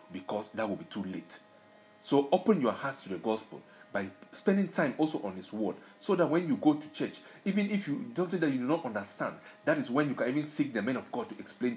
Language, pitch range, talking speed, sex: English, 140-220 Hz, 250 wpm, male